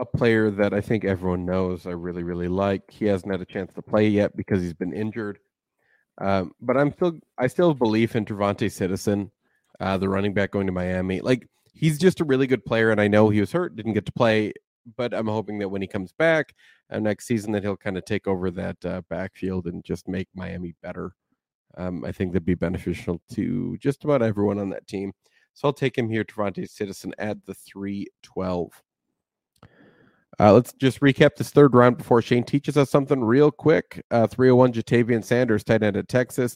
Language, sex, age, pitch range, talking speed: English, male, 30-49, 100-120 Hz, 210 wpm